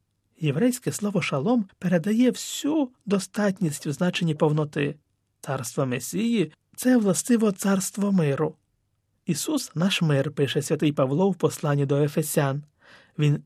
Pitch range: 140-195 Hz